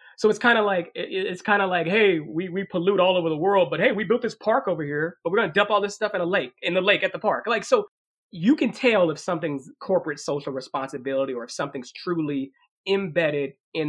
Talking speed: 250 wpm